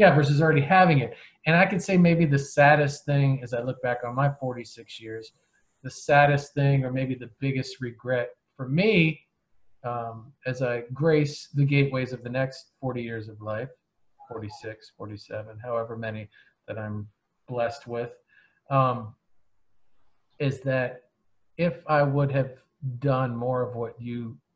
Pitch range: 110-135 Hz